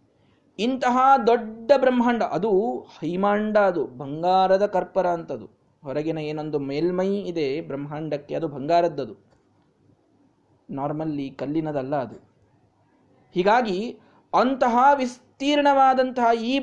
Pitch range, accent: 165-235 Hz, native